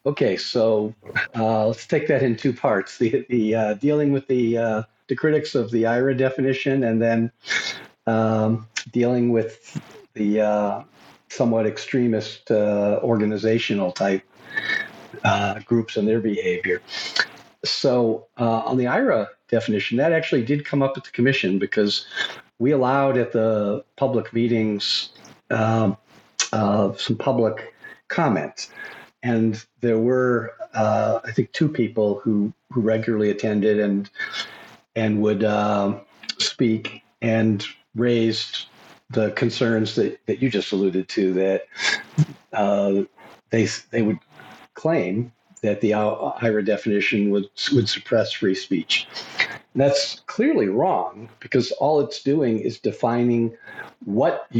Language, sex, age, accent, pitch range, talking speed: English, male, 50-69, American, 105-120 Hz, 130 wpm